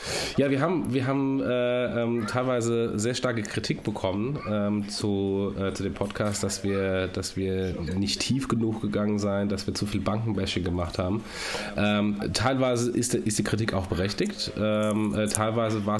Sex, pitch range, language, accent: male, 90-105 Hz, German, German